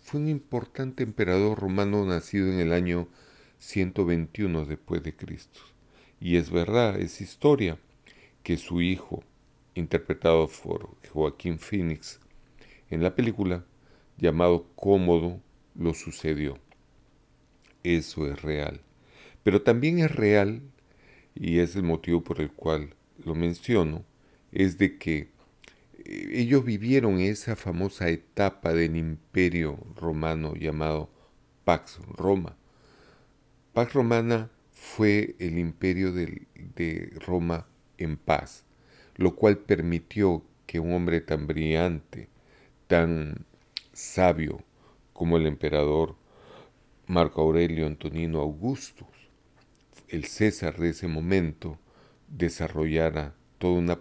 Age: 40-59